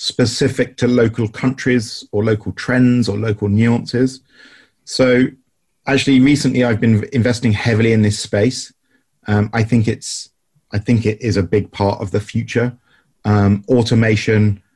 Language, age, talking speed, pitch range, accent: English, 30-49, 145 wpm, 100-120 Hz, British